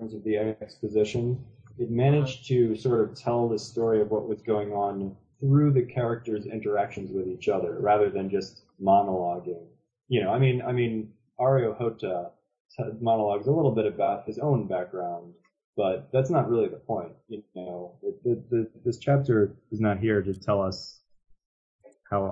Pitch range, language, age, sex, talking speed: 95-120 Hz, English, 20-39, male, 160 wpm